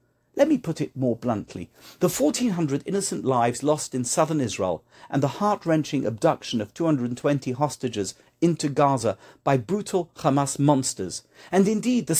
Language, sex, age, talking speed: English, male, 50-69, 150 wpm